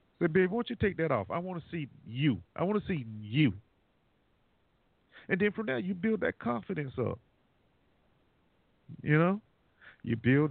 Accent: American